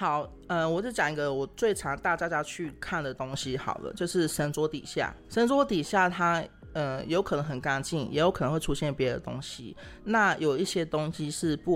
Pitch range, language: 140-175 Hz, Chinese